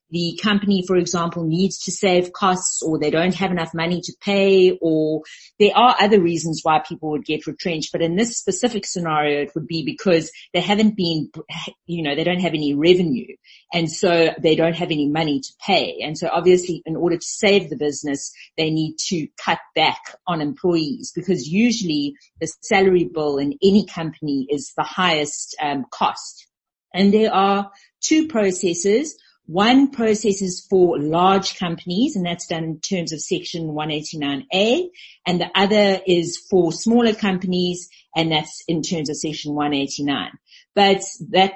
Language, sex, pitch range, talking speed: English, female, 165-200 Hz, 170 wpm